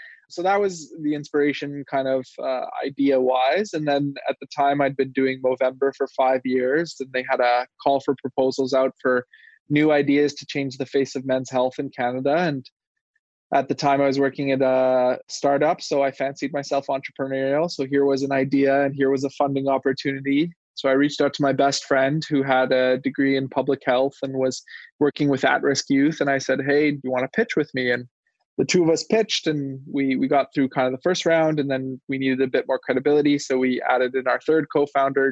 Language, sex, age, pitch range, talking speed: English, male, 20-39, 130-145 Hz, 225 wpm